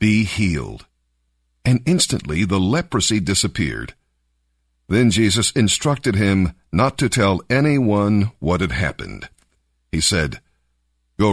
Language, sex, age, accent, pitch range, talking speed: English, male, 50-69, American, 80-115 Hz, 110 wpm